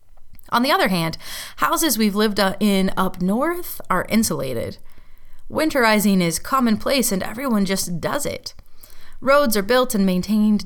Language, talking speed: English, 140 wpm